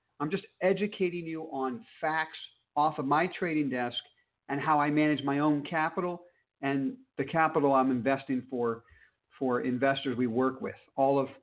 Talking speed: 165 wpm